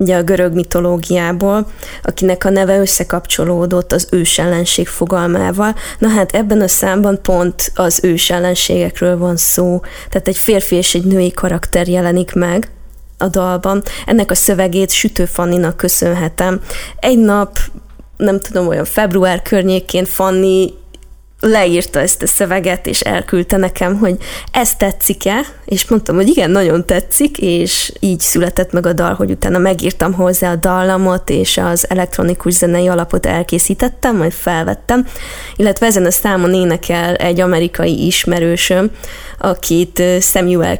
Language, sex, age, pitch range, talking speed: Hungarian, female, 20-39, 175-195 Hz, 140 wpm